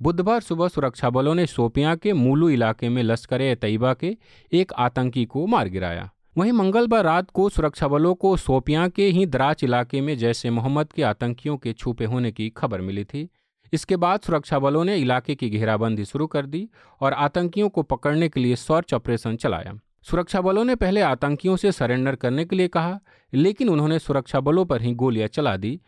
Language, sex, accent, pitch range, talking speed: Hindi, male, native, 120-165 Hz, 195 wpm